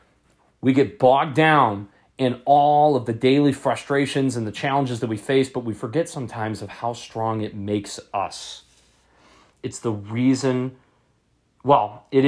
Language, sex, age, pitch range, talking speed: English, male, 30-49, 105-140 Hz, 150 wpm